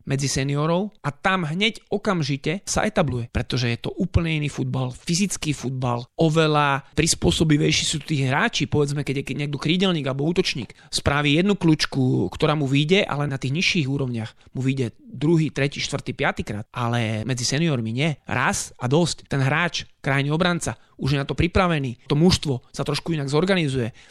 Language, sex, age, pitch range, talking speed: Slovak, male, 30-49, 135-170 Hz, 170 wpm